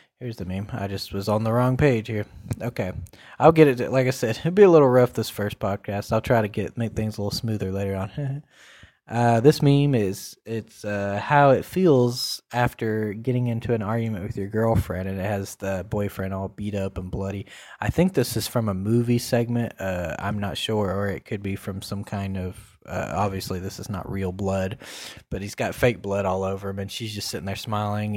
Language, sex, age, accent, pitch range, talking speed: English, male, 20-39, American, 100-125 Hz, 225 wpm